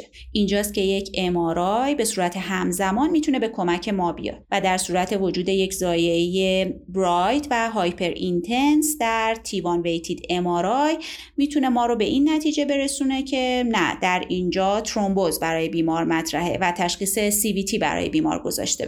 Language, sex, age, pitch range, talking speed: Persian, female, 30-49, 185-250 Hz, 155 wpm